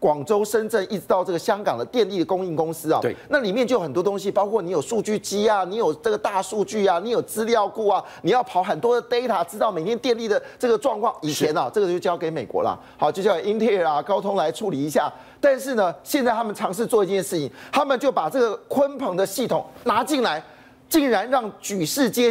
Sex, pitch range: male, 195-245 Hz